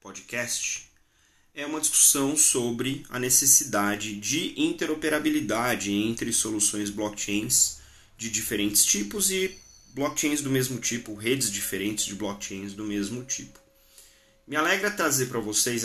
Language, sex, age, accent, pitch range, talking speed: Portuguese, male, 30-49, Brazilian, 105-140 Hz, 120 wpm